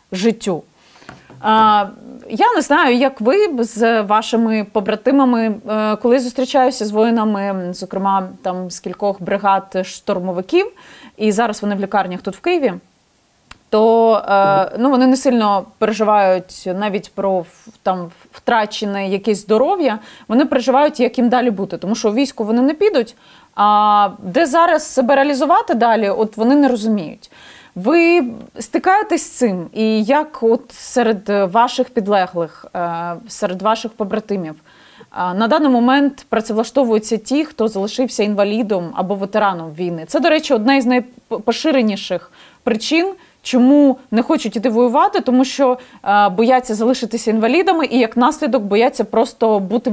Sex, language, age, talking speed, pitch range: female, Russian, 30-49, 130 wpm, 200-255 Hz